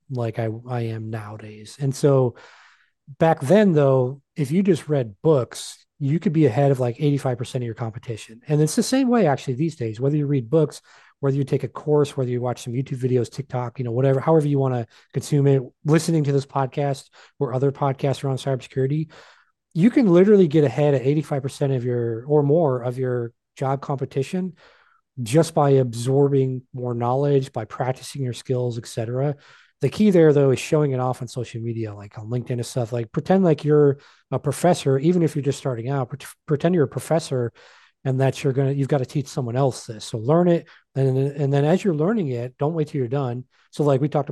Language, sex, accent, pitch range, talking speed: English, male, American, 125-155 Hz, 210 wpm